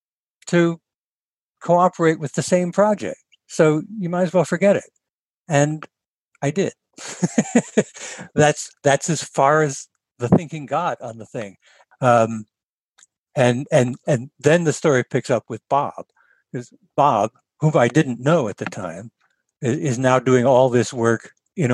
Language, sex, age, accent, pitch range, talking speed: English, male, 60-79, American, 125-165 Hz, 150 wpm